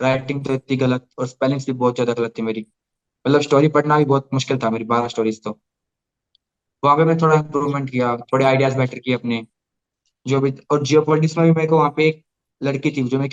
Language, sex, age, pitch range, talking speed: Hindi, male, 20-39, 125-155 Hz, 215 wpm